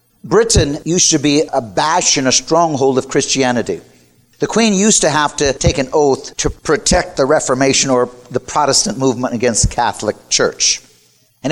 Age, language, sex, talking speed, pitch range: 50-69, English, male, 170 wpm, 125-155 Hz